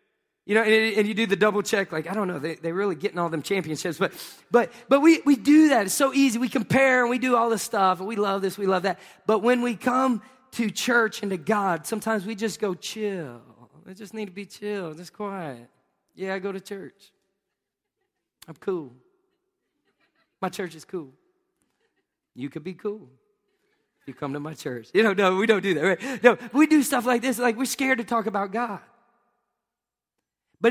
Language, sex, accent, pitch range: English, male, American, 170-230 Hz